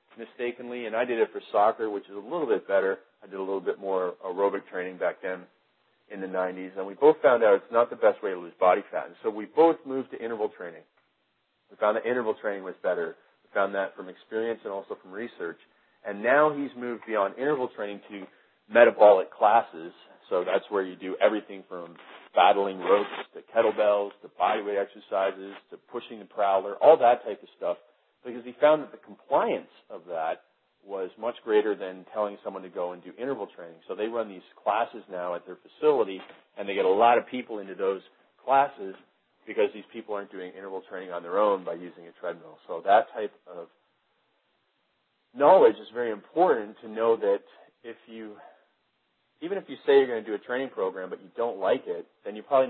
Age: 40-59